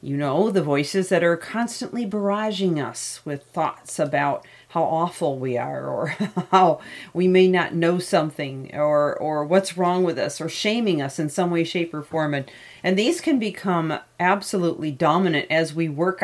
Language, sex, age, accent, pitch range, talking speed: English, female, 40-59, American, 165-195 Hz, 175 wpm